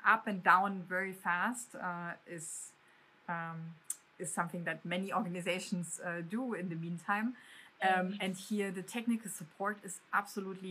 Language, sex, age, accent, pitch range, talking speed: English, female, 30-49, German, 185-230 Hz, 145 wpm